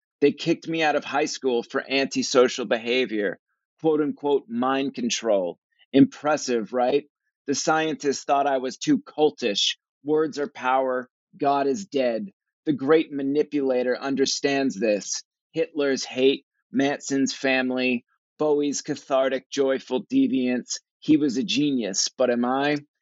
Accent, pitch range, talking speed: American, 135-155 Hz, 130 wpm